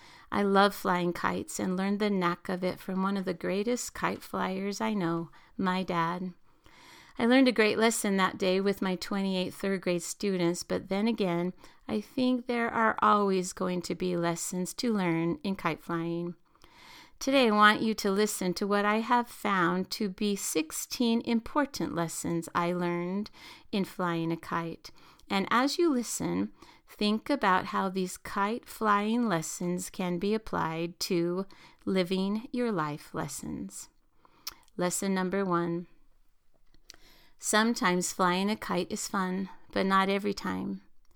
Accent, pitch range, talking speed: American, 175-210 Hz, 155 wpm